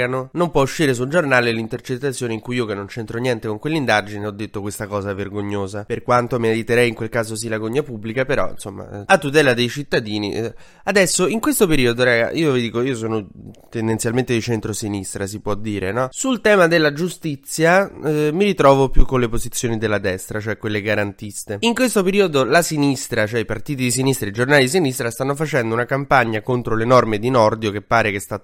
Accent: native